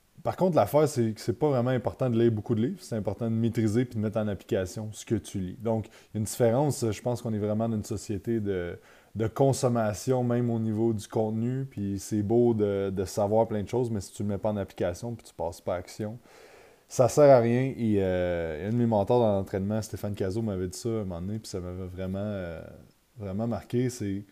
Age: 20-39